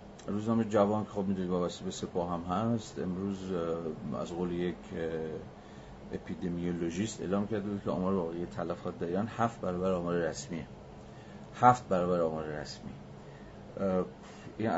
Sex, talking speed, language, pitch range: male, 130 wpm, Persian, 85-100 Hz